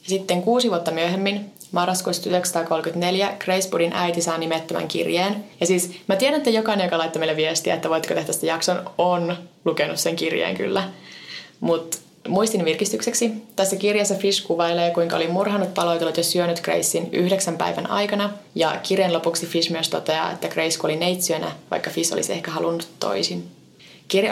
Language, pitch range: Finnish, 160-190 Hz